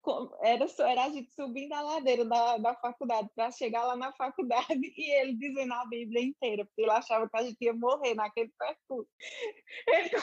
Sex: female